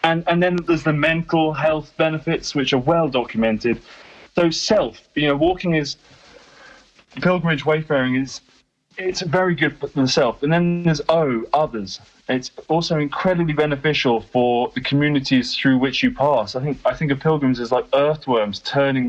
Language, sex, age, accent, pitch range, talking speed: English, male, 20-39, British, 125-165 Hz, 165 wpm